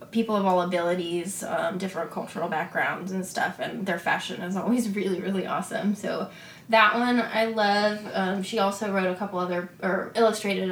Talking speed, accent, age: 180 wpm, American, 20-39